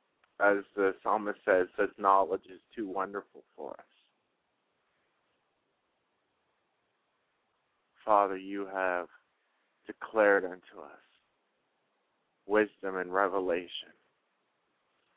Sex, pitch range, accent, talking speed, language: male, 105-120 Hz, American, 80 wpm, English